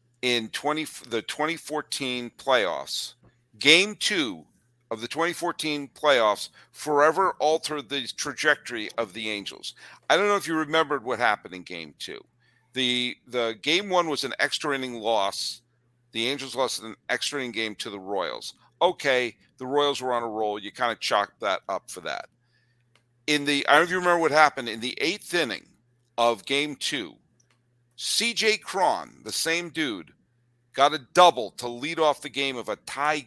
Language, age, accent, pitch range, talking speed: English, 50-69, American, 120-150 Hz, 175 wpm